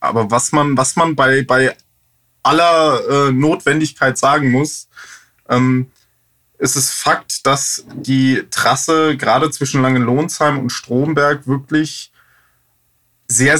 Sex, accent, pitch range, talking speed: male, German, 125-145 Hz, 120 wpm